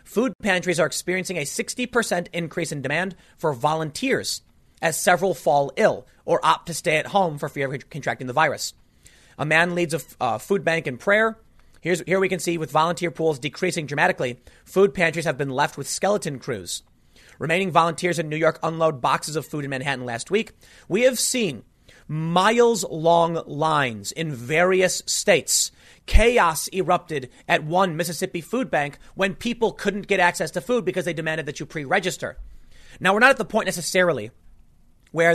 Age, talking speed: 30-49, 175 wpm